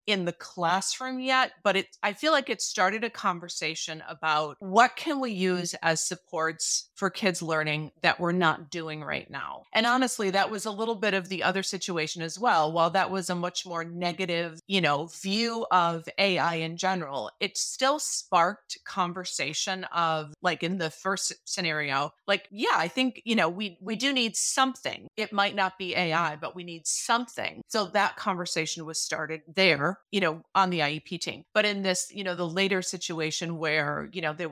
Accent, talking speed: American, 190 wpm